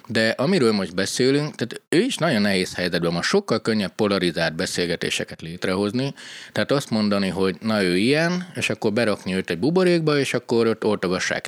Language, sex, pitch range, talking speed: Hungarian, male, 95-130 Hz, 165 wpm